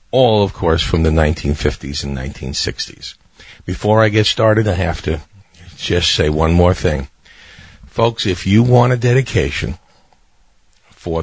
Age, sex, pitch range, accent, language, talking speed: 50-69, male, 80-110 Hz, American, English, 145 wpm